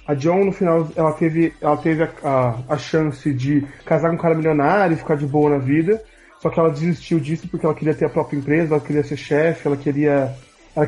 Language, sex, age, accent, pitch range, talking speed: Portuguese, male, 20-39, Brazilian, 145-170 Hz, 235 wpm